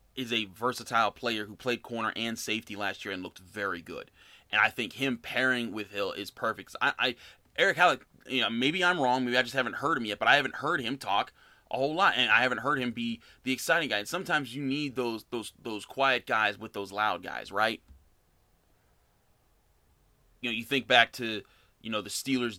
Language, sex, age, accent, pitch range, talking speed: English, male, 30-49, American, 105-125 Hz, 220 wpm